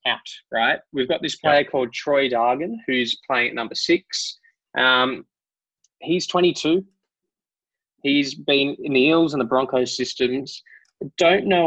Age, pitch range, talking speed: 20-39, 125-165 Hz, 150 wpm